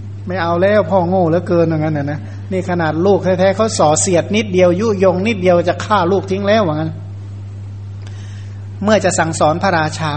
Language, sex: Thai, male